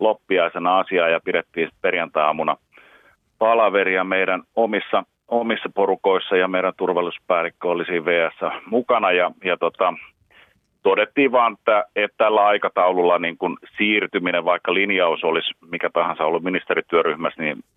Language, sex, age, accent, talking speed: Finnish, male, 40-59, native, 120 wpm